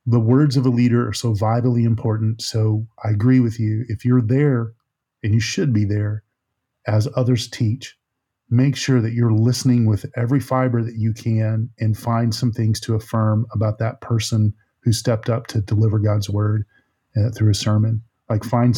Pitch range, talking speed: 110-125 Hz, 185 wpm